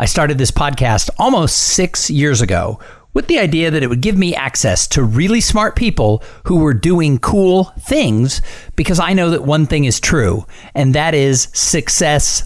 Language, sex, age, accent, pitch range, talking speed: English, male, 50-69, American, 125-170 Hz, 185 wpm